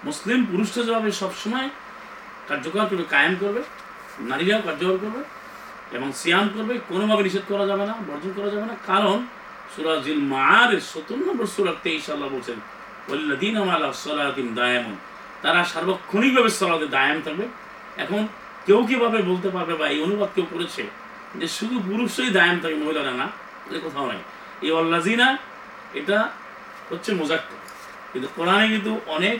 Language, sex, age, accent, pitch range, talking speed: Bengali, male, 40-59, native, 160-215 Hz, 85 wpm